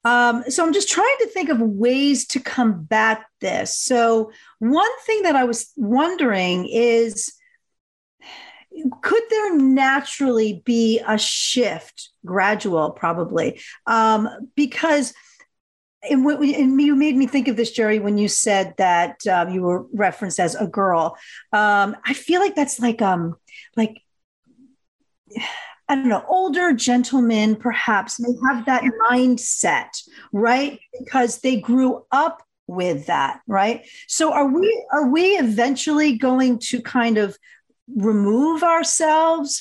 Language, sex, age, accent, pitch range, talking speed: English, female, 40-59, American, 210-290 Hz, 135 wpm